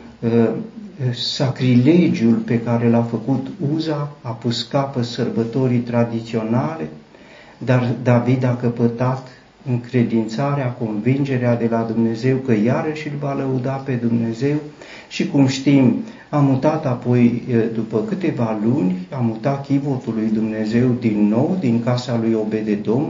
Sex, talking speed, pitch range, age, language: male, 120 wpm, 115-140 Hz, 50-69, Romanian